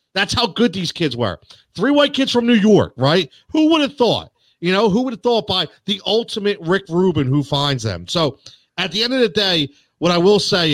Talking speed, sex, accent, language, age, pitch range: 235 wpm, male, American, English, 40-59, 130-205 Hz